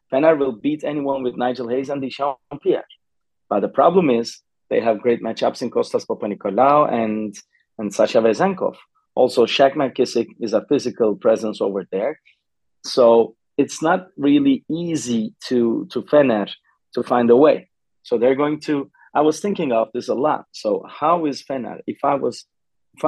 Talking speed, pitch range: 170 wpm, 105-140 Hz